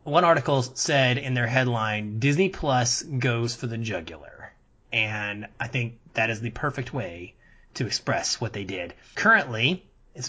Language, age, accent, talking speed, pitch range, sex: English, 30-49, American, 155 wpm, 115-145 Hz, male